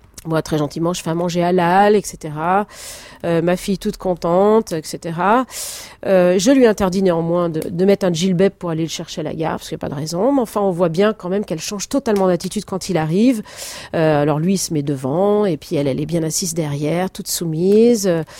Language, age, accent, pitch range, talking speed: French, 40-59, French, 165-210 Hz, 230 wpm